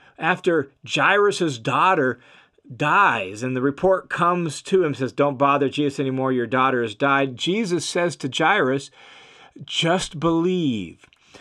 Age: 40-59